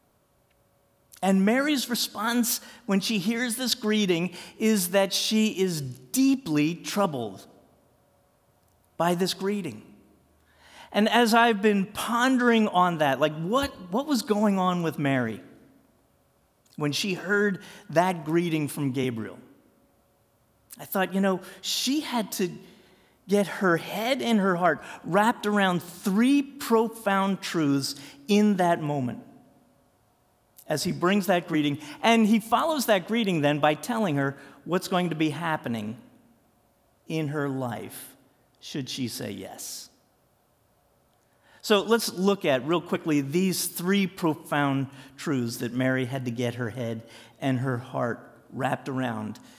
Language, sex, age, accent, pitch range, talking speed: English, male, 50-69, American, 140-215 Hz, 130 wpm